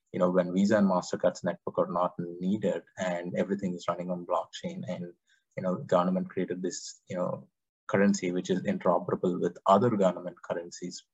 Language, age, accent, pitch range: English, 20-39, Indian, 90-100 Hz